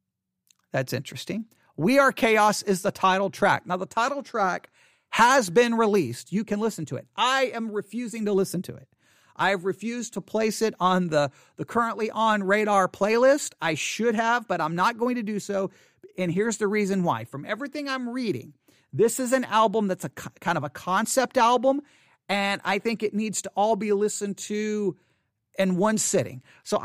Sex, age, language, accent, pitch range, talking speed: male, 40-59, English, American, 175-225 Hz, 185 wpm